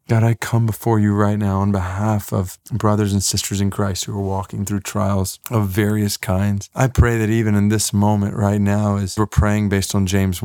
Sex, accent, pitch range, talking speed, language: male, American, 105-130 Hz, 220 wpm, English